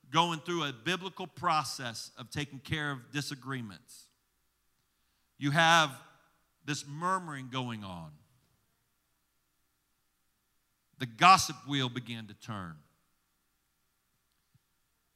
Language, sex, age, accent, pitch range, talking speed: English, male, 50-69, American, 100-145 Hz, 85 wpm